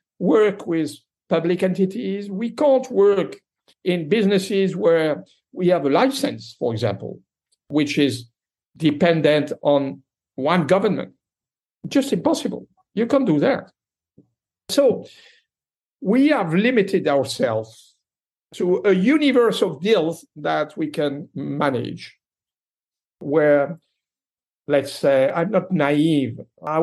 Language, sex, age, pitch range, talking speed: English, male, 60-79, 140-200 Hz, 110 wpm